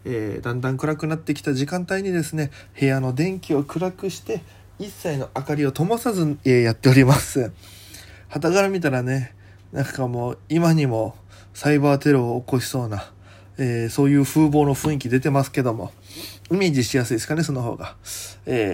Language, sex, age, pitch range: Japanese, male, 20-39, 120-150 Hz